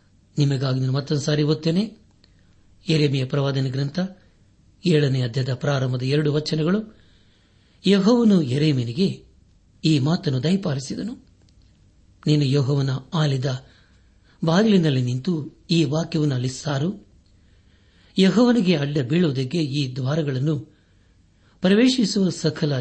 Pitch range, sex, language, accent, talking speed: 100-160 Hz, male, Kannada, native, 85 wpm